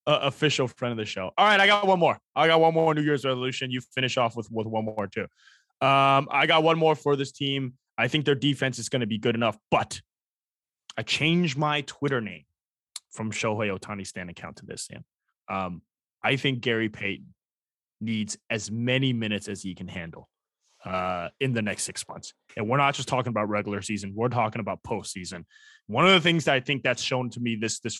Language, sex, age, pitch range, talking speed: English, male, 20-39, 115-160 Hz, 220 wpm